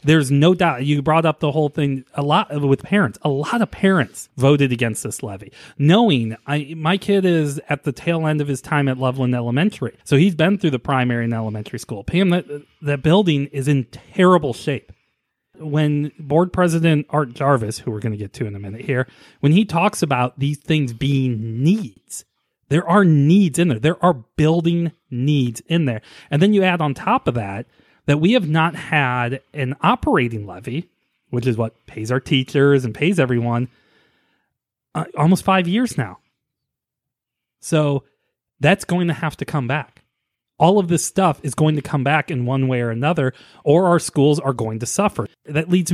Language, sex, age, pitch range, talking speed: English, male, 30-49, 130-175 Hz, 190 wpm